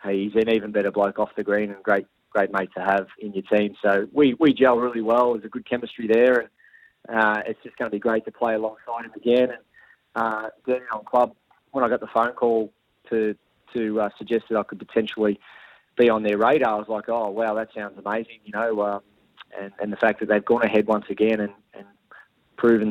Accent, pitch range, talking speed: Australian, 105-115 Hz, 230 wpm